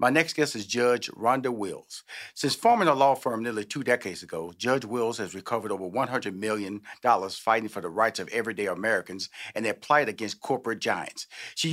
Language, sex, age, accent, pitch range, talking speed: English, male, 40-59, American, 135-180 Hz, 190 wpm